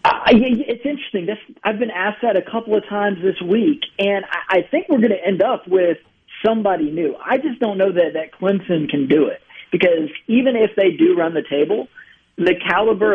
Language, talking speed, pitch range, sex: English, 210 wpm, 155-215 Hz, male